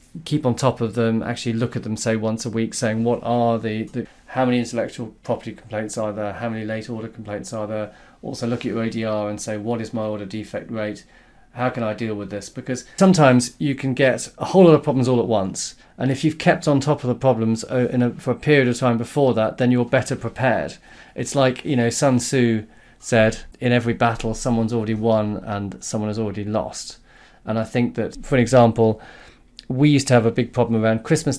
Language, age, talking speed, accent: English, 30-49, 230 wpm, British